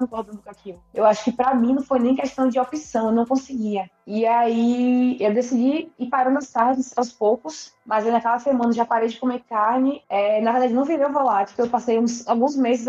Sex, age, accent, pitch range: female, 20-39, Brazilian, 215-250 Hz